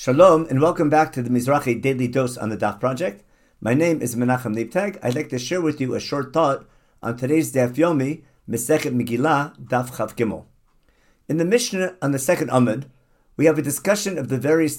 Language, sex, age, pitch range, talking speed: English, male, 50-69, 125-160 Hz, 205 wpm